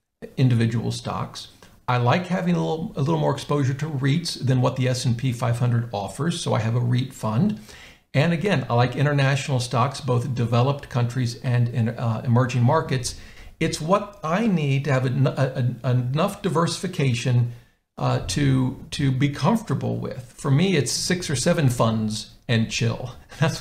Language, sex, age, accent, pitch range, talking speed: English, male, 50-69, American, 120-170 Hz, 170 wpm